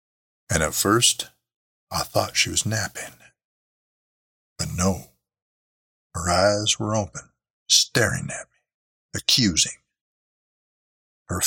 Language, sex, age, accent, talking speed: English, male, 60-79, American, 100 wpm